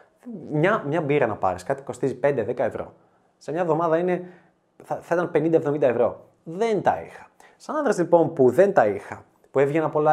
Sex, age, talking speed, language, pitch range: male, 20-39, 185 wpm, Greek, 140-190 Hz